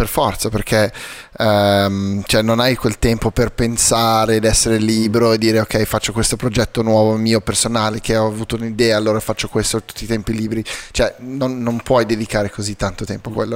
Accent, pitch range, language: native, 110-125 Hz, Italian